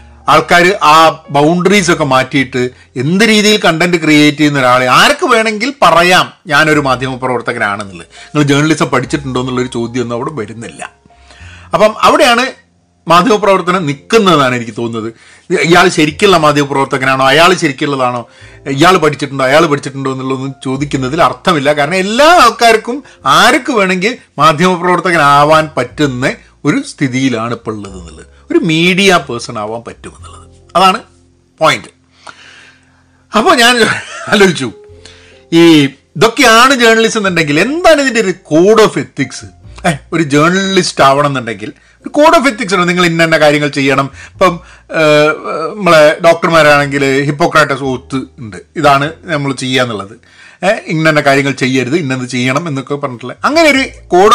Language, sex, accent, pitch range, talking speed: Malayalam, male, native, 130-180 Hz, 115 wpm